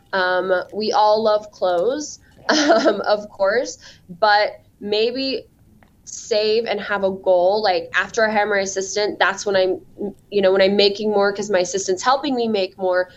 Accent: American